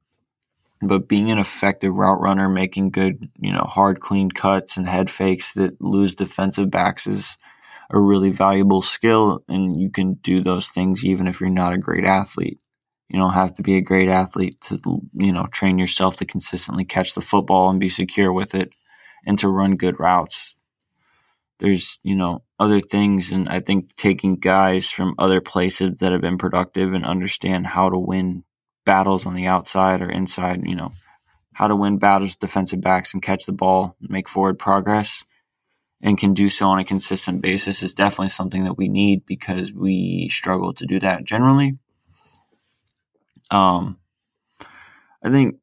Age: 20-39